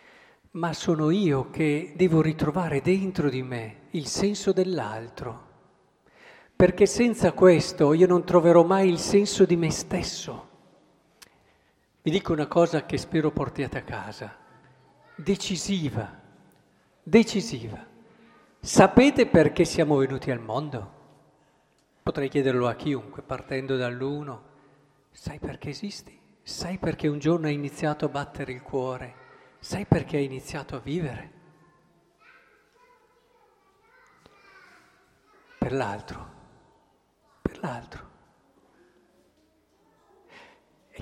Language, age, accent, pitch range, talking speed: Italian, 50-69, native, 135-195 Hz, 105 wpm